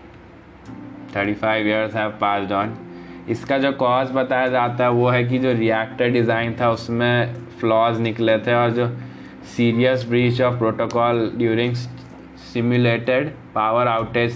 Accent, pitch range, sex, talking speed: native, 110-125 Hz, male, 140 wpm